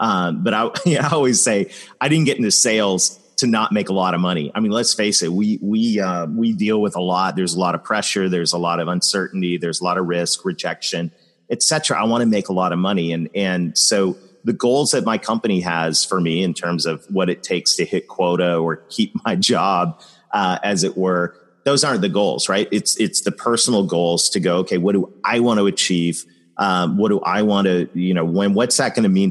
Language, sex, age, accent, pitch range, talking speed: English, male, 30-49, American, 90-120 Hz, 240 wpm